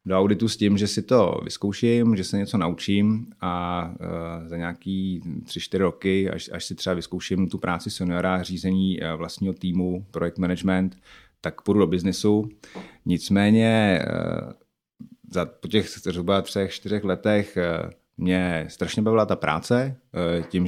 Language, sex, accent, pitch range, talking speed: Czech, male, native, 90-100 Hz, 140 wpm